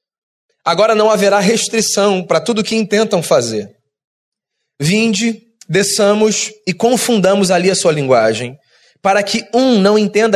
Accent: Brazilian